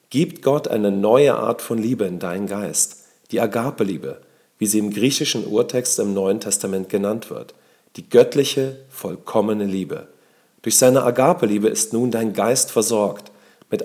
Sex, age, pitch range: male, 40-59, 105-135 Hz